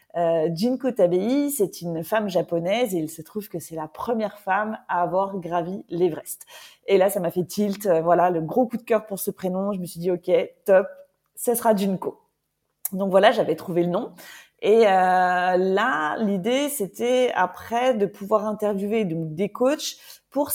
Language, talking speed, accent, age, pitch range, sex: French, 185 wpm, French, 30-49, 175-230 Hz, female